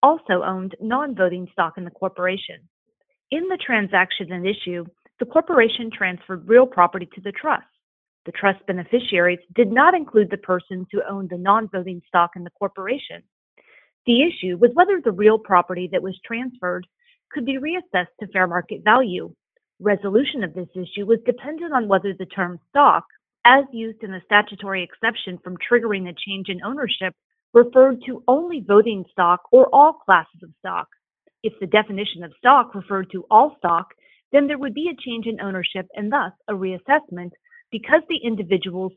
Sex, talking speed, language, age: female, 170 wpm, English, 30-49